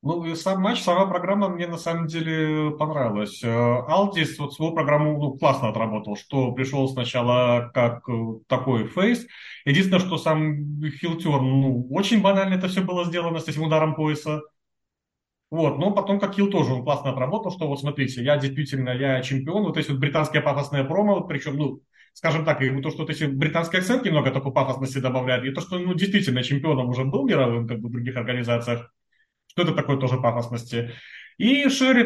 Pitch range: 130-180 Hz